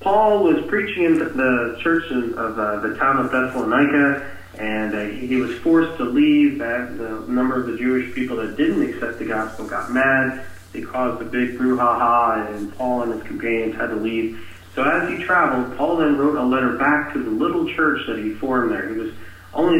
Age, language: 40-59, English